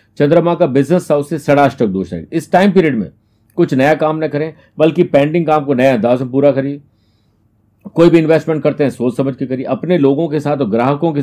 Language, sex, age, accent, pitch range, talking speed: Hindi, male, 50-69, native, 130-160 Hz, 220 wpm